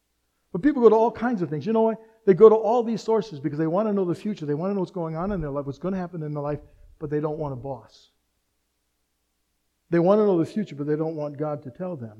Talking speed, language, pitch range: 300 wpm, English, 120-190 Hz